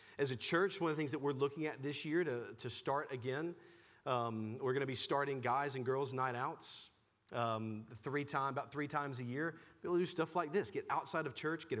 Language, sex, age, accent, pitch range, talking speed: English, male, 40-59, American, 130-170 Hz, 235 wpm